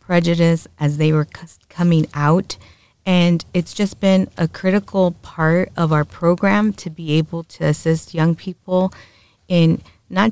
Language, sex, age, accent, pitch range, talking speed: English, female, 30-49, American, 150-185 Hz, 145 wpm